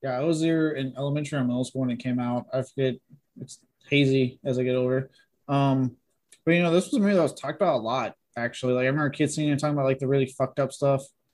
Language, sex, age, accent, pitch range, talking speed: English, male, 20-39, American, 130-155 Hz, 265 wpm